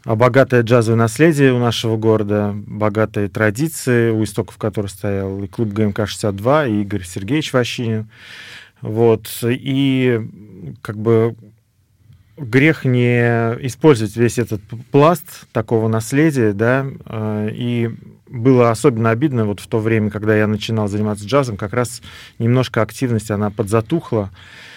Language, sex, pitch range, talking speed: Russian, male, 105-125 Hz, 125 wpm